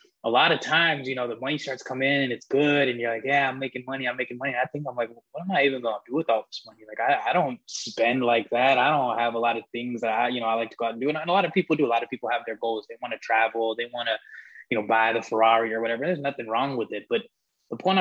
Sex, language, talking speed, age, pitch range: male, English, 340 wpm, 20-39, 120-155 Hz